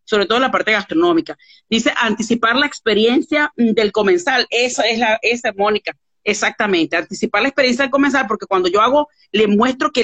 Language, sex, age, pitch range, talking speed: Spanish, female, 40-59, 215-275 Hz, 175 wpm